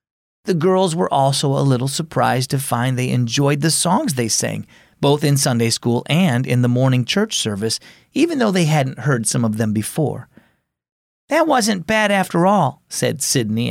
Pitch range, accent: 125-185 Hz, American